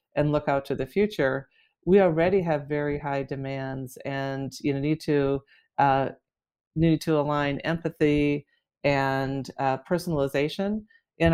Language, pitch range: English, 140-155 Hz